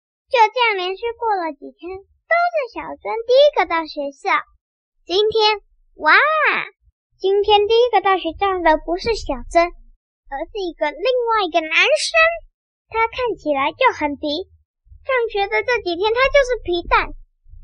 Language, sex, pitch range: Chinese, male, 320-450 Hz